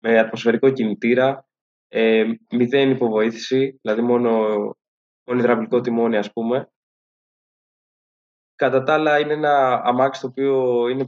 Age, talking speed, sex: 20-39, 115 wpm, male